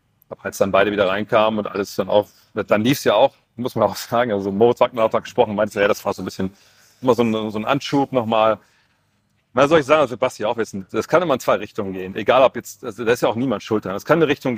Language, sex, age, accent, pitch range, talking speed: German, male, 40-59, German, 105-120 Hz, 270 wpm